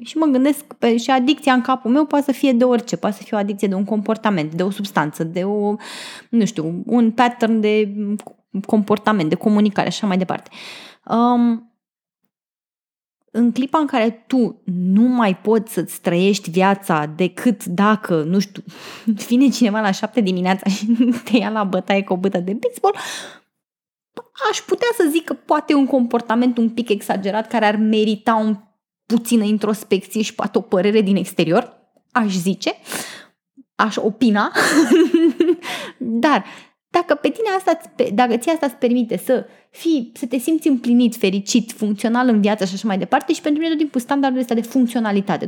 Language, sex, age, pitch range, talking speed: Romanian, female, 20-39, 205-265 Hz, 165 wpm